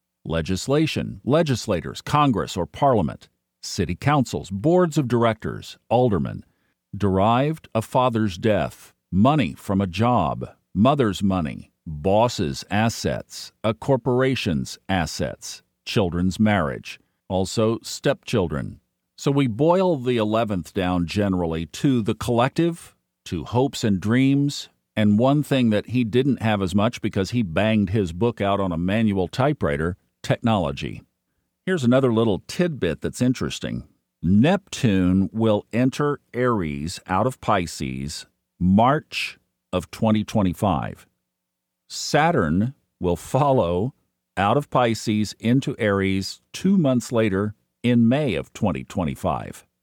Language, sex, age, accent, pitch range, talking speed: English, male, 50-69, American, 95-130 Hz, 115 wpm